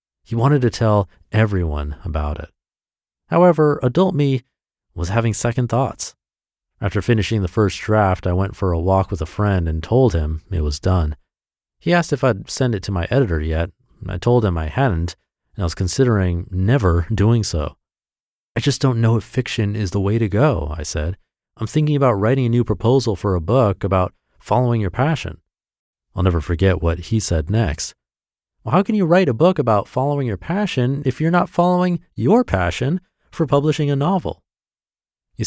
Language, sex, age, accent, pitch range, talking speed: English, male, 30-49, American, 85-125 Hz, 190 wpm